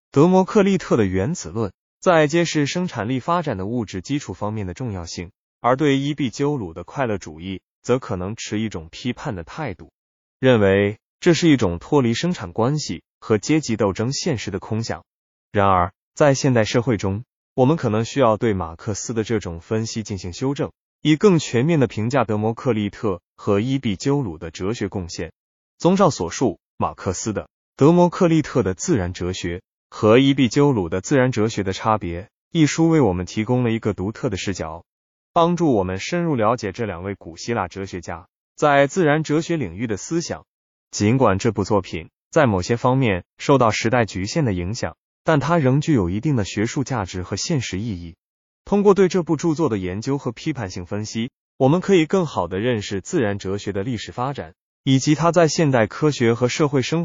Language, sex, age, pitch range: Chinese, male, 20-39, 100-145 Hz